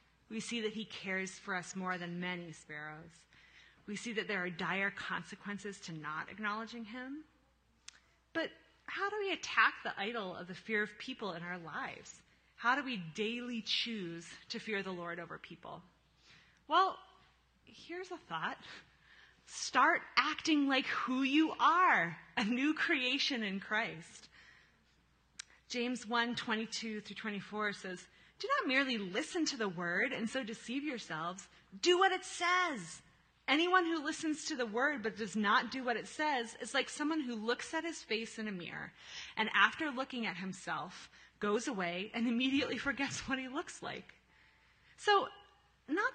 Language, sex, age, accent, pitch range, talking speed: English, female, 30-49, American, 190-270 Hz, 160 wpm